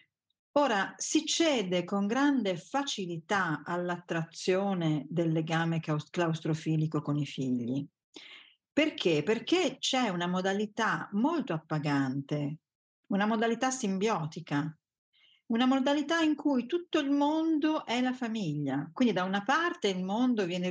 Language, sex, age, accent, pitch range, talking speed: Italian, female, 50-69, native, 160-255 Hz, 115 wpm